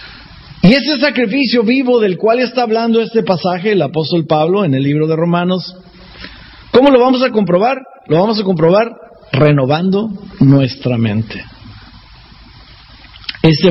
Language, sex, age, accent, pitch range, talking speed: English, male, 50-69, Mexican, 150-230 Hz, 135 wpm